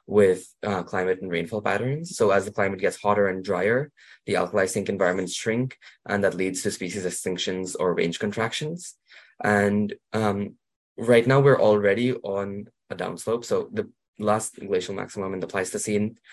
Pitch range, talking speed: 95-110 Hz, 165 wpm